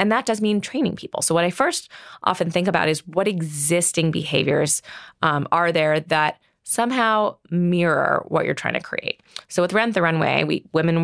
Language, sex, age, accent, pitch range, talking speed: English, female, 20-39, American, 150-185 Hz, 185 wpm